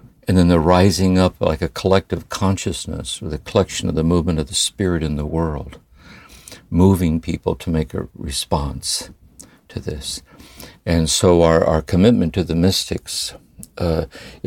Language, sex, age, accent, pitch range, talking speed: English, male, 60-79, American, 80-95 Hz, 155 wpm